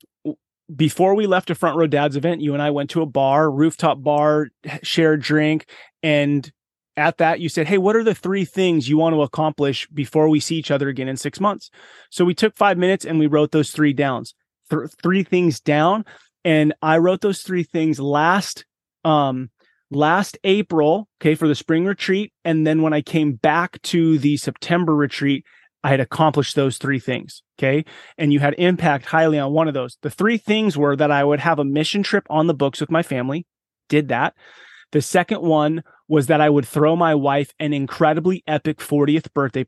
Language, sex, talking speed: English, male, 200 wpm